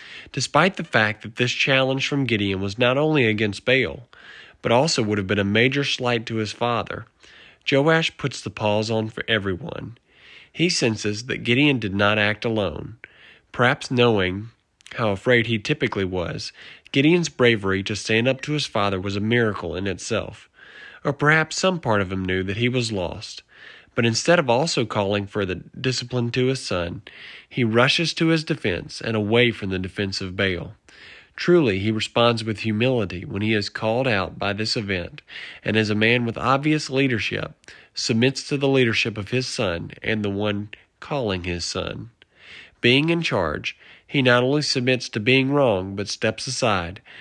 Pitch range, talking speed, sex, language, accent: 100-130 Hz, 175 wpm, male, English, American